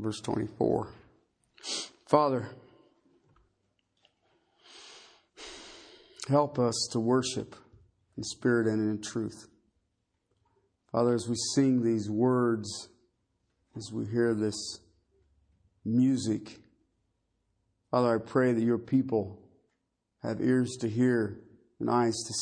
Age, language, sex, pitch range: 50-69, English, male, 110-130 Hz